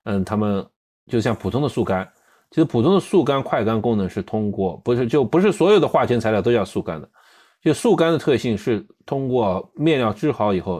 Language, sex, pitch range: Chinese, male, 95-145 Hz